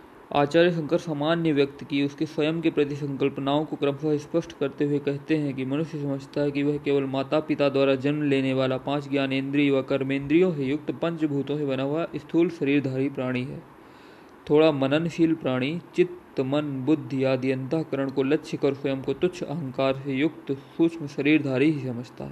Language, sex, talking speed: Hindi, male, 175 wpm